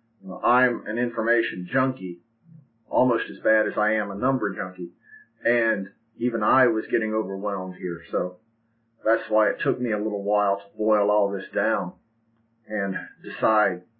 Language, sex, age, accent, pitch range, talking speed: English, male, 40-59, American, 105-120 Hz, 155 wpm